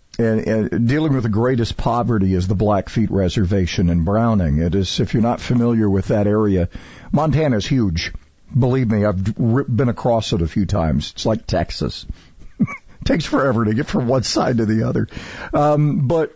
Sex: male